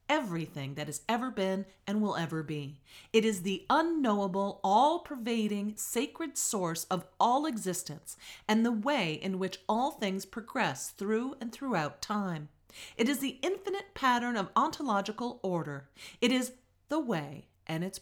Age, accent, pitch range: 40-59, American, 175-255 Hz